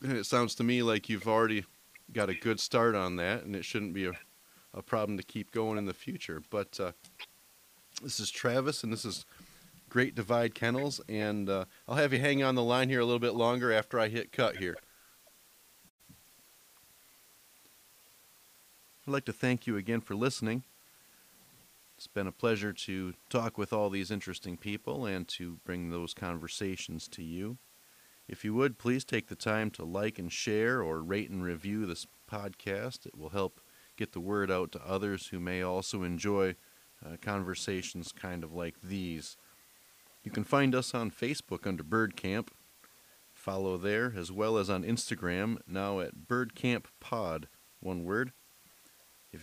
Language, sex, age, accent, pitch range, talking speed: English, male, 40-59, American, 95-115 Hz, 175 wpm